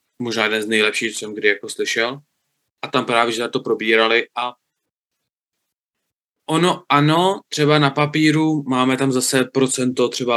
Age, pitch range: 20-39, 120-140 Hz